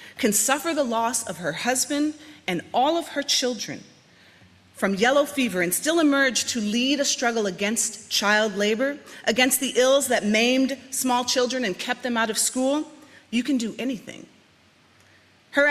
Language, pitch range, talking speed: English, 205-265 Hz, 165 wpm